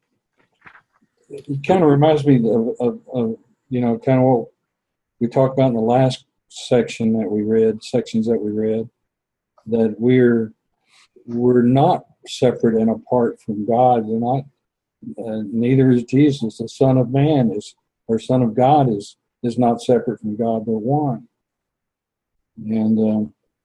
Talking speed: 150 wpm